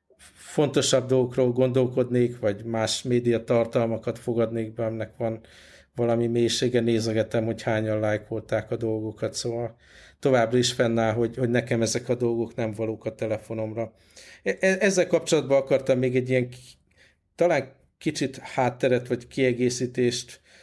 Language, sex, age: Hungarian, male, 50-69